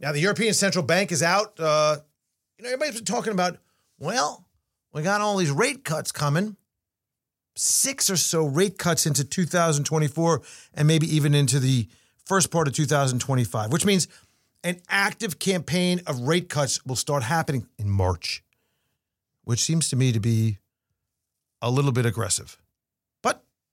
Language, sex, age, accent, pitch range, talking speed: English, male, 40-59, American, 125-175 Hz, 155 wpm